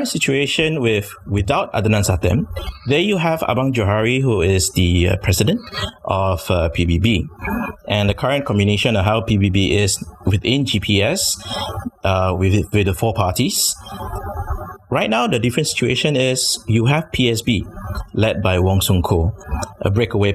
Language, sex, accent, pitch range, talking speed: English, male, Malaysian, 90-115 Hz, 145 wpm